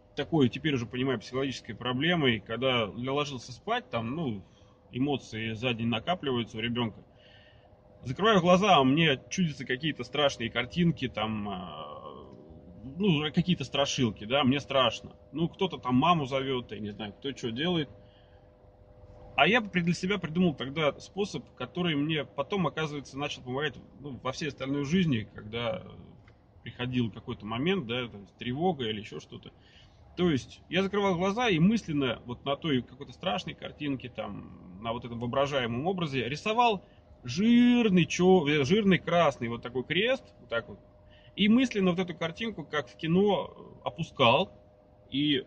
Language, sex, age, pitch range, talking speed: Russian, male, 30-49, 115-175 Hz, 145 wpm